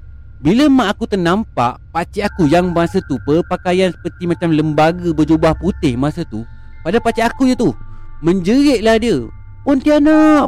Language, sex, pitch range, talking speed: Malay, male, 135-210 Hz, 150 wpm